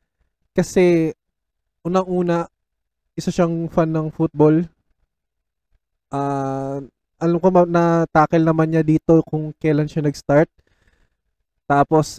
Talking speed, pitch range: 105 wpm, 145-170 Hz